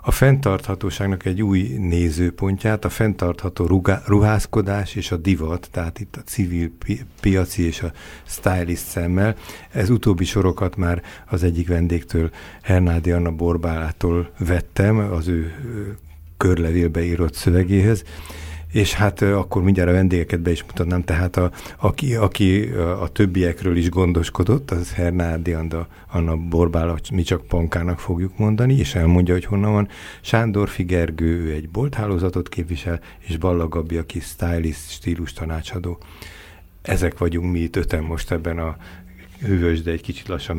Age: 60-79